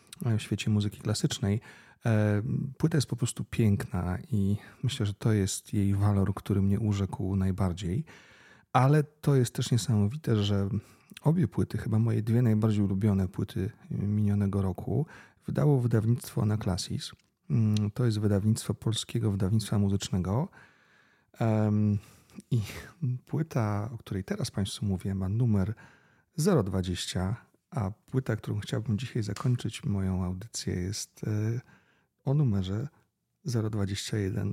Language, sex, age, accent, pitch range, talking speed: Polish, male, 40-59, native, 100-120 Hz, 115 wpm